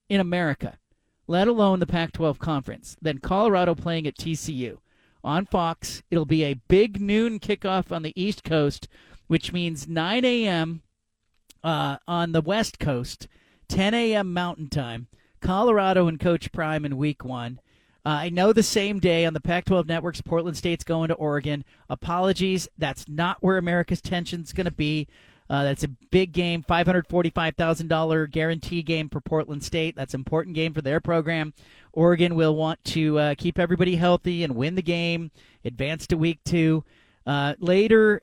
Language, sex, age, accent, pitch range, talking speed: English, male, 40-59, American, 150-180 Hz, 160 wpm